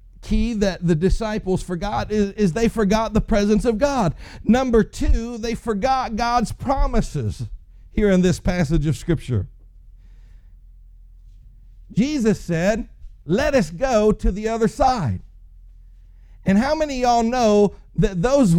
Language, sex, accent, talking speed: English, male, American, 130 wpm